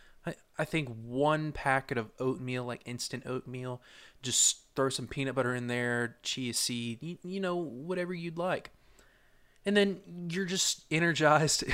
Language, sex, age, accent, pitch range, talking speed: English, male, 20-39, American, 120-150 Hz, 145 wpm